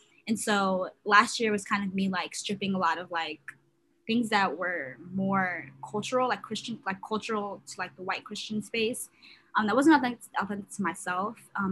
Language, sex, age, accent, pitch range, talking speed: English, female, 20-39, American, 195-250 Hz, 185 wpm